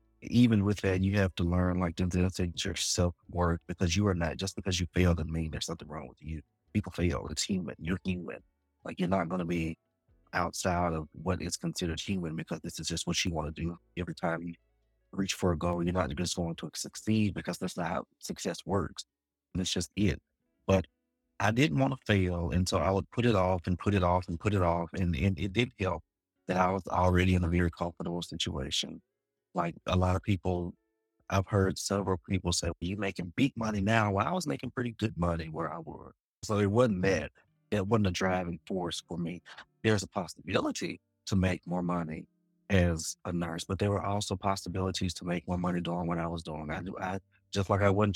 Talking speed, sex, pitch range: 225 wpm, male, 85-100 Hz